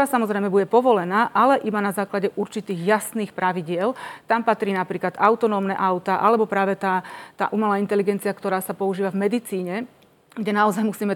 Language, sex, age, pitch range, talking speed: Slovak, female, 30-49, 190-215 Hz, 160 wpm